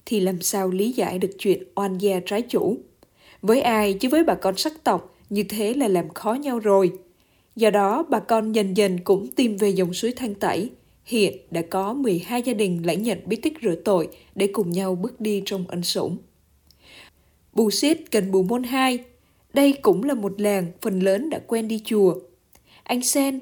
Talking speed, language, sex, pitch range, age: 200 wpm, Vietnamese, female, 190-245 Hz, 20-39